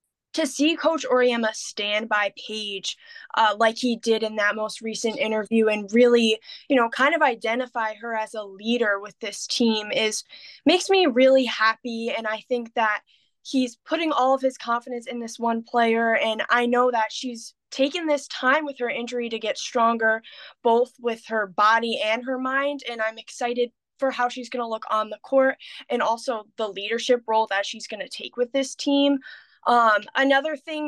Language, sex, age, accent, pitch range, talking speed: English, female, 10-29, American, 220-265 Hz, 190 wpm